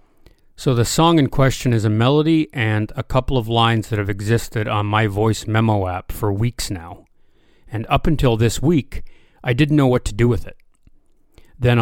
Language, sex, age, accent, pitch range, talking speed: English, male, 40-59, American, 105-125 Hz, 195 wpm